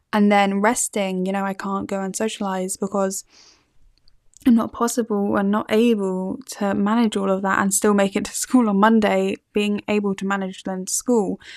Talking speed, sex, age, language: 185 wpm, female, 10-29, English